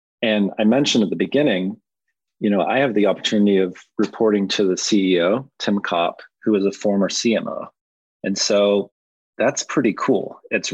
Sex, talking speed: male, 170 wpm